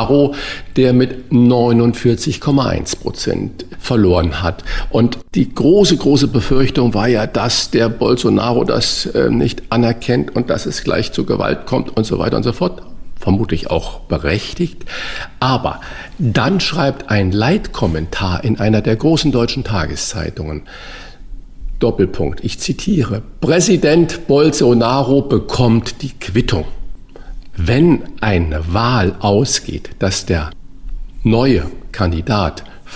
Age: 50-69